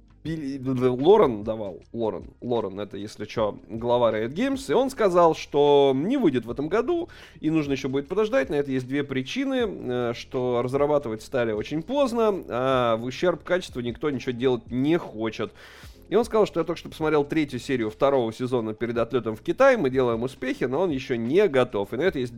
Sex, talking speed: male, 190 wpm